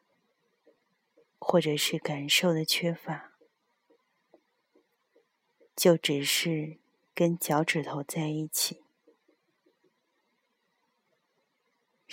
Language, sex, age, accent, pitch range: Chinese, female, 30-49, native, 160-185 Hz